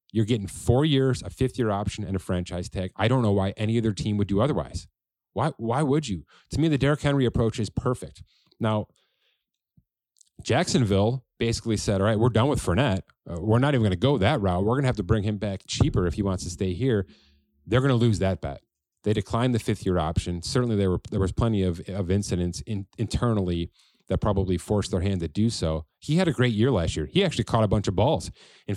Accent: American